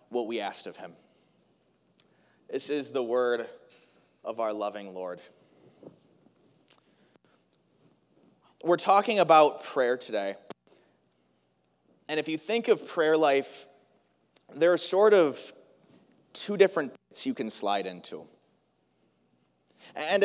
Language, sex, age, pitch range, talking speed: English, male, 30-49, 125-180 Hz, 110 wpm